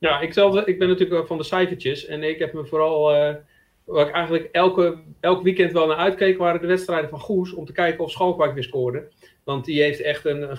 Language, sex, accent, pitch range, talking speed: Dutch, male, Dutch, 125-155 Hz, 225 wpm